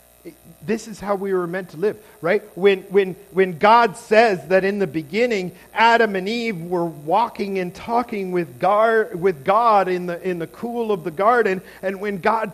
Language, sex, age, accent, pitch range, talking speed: English, male, 50-69, American, 170-215 Hz, 190 wpm